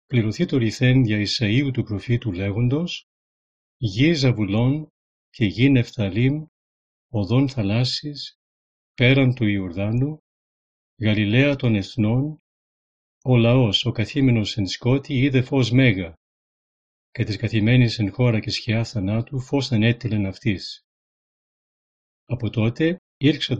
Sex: male